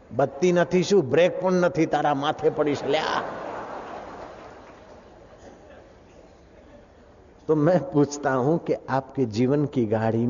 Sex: male